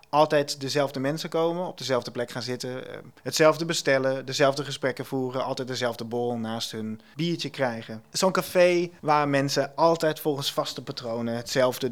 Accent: Dutch